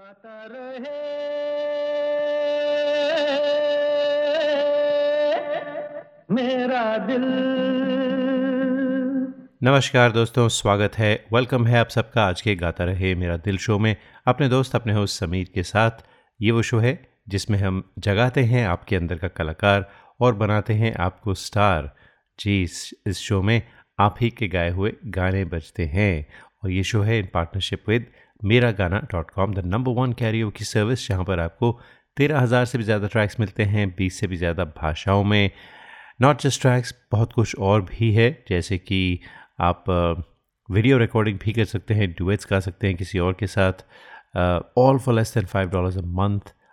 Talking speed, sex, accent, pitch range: 150 wpm, male, native, 95-130 Hz